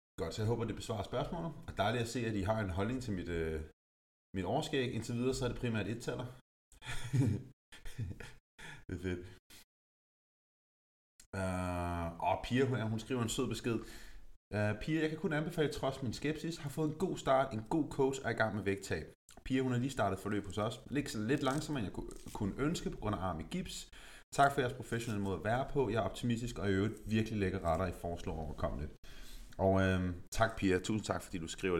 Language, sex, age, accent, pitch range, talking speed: Danish, male, 30-49, native, 100-140 Hz, 215 wpm